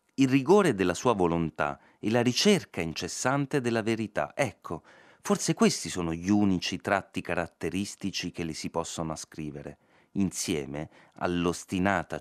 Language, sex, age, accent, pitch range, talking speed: Italian, male, 30-49, native, 80-120 Hz, 130 wpm